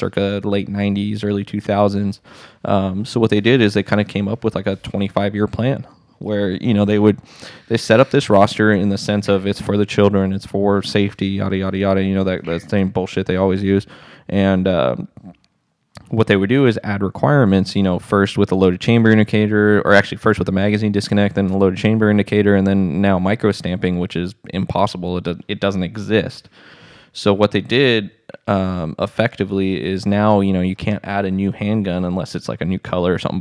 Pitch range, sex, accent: 95-105 Hz, male, American